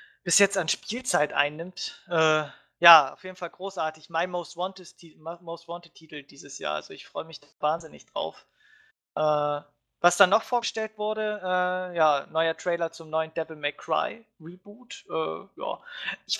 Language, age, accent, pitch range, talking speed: English, 20-39, German, 155-180 Hz, 150 wpm